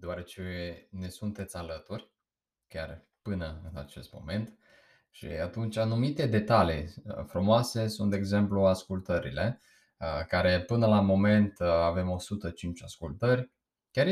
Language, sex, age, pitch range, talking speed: Romanian, male, 20-39, 90-110 Hz, 110 wpm